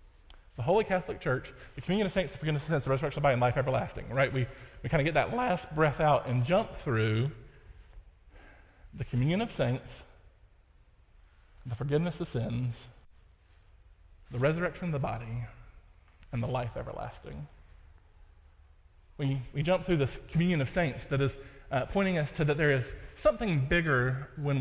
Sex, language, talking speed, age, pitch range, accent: male, English, 170 wpm, 20-39, 115-150 Hz, American